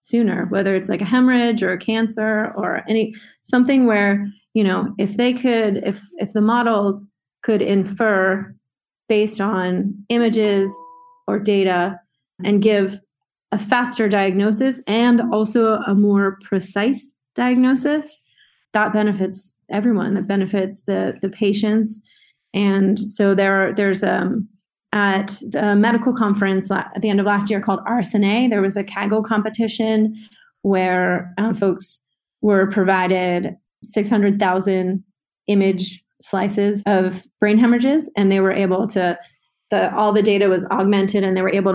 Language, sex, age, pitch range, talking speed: English, female, 30-49, 190-220 Hz, 140 wpm